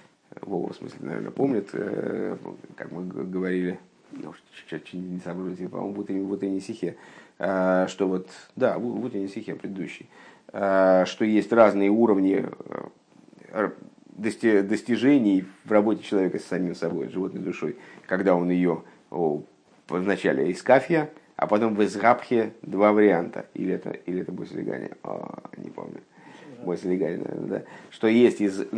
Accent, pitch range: native, 95-120 Hz